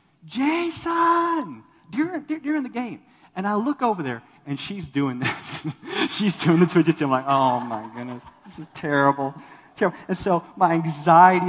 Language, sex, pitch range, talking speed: English, male, 130-175 Hz, 165 wpm